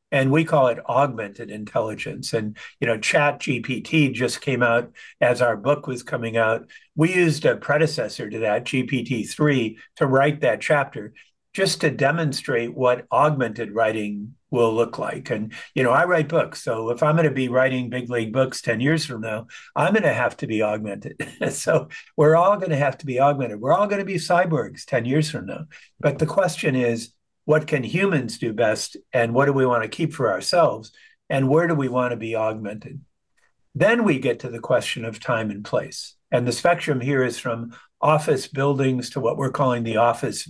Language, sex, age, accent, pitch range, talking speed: English, male, 50-69, American, 115-150 Hz, 205 wpm